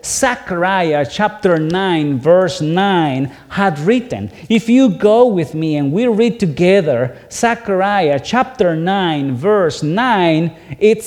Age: 50-69